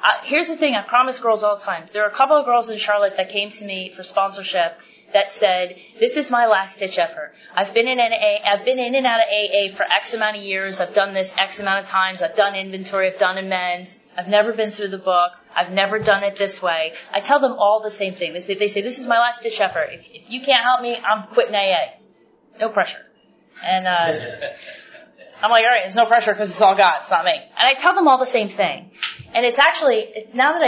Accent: American